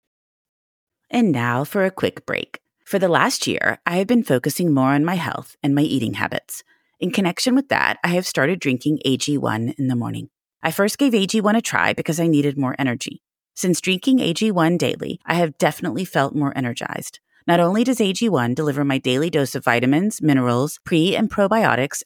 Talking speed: 190 wpm